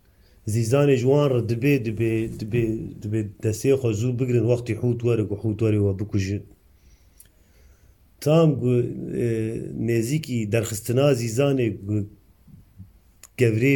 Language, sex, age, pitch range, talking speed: Turkish, male, 30-49, 105-125 Hz, 95 wpm